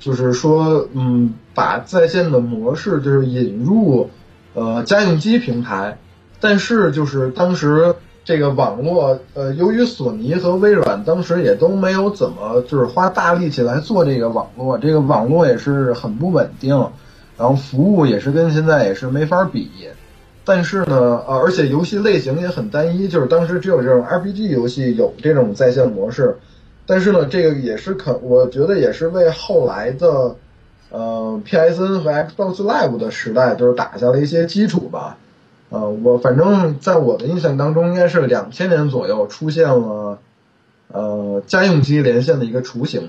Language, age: Chinese, 20-39